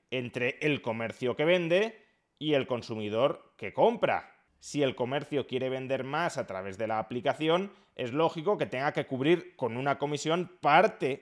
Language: Spanish